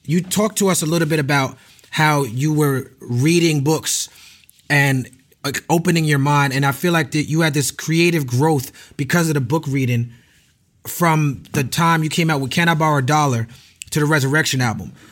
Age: 30-49